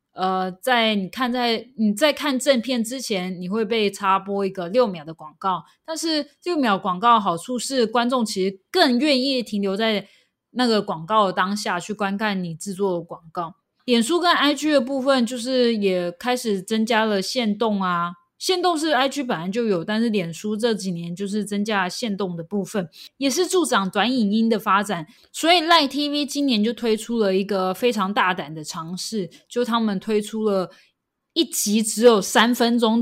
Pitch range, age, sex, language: 190-250 Hz, 20-39, female, Chinese